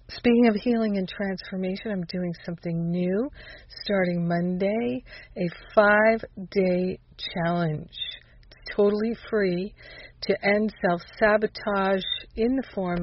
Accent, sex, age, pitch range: American, female, 50-69, 175-215 Hz